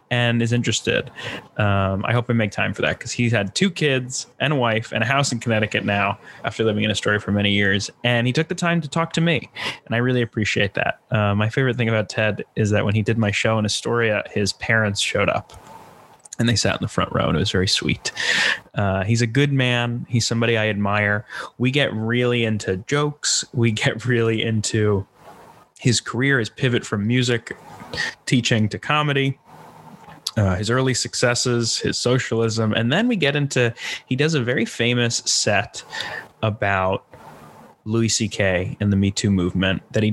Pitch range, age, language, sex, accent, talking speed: 105-125 Hz, 20-39, English, male, American, 195 wpm